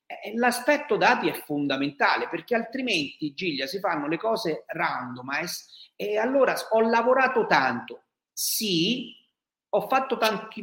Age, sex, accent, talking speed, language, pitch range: 40-59, male, native, 120 wpm, Italian, 150-235 Hz